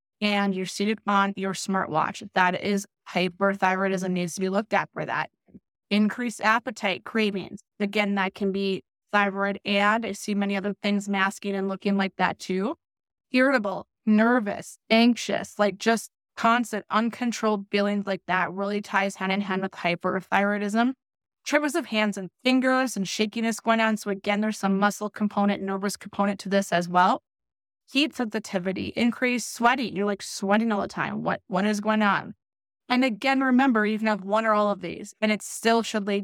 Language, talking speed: English, 175 wpm